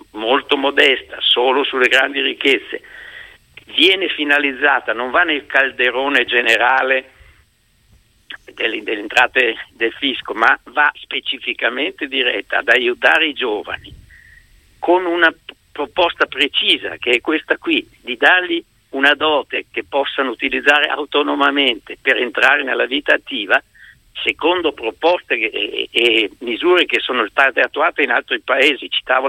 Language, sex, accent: Italian, male, native